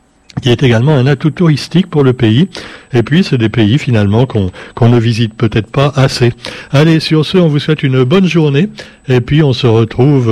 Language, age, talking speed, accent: French, 60-79, 205 wpm, French